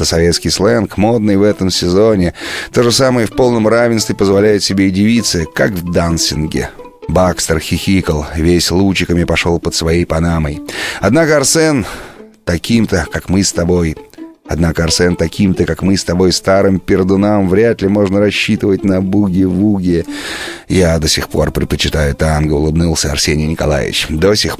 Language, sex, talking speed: Russian, male, 145 wpm